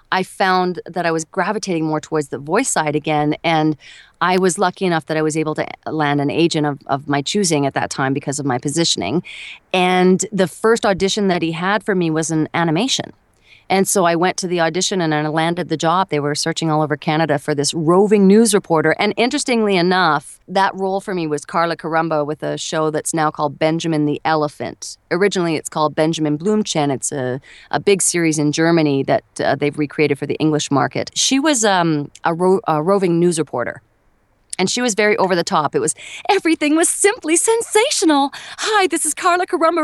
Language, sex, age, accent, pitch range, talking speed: English, female, 30-49, American, 155-210 Hz, 205 wpm